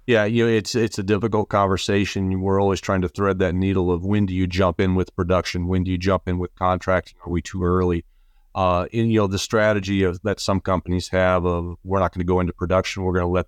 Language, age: English, 40-59